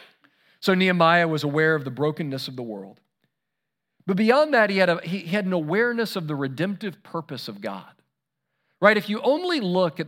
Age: 40-59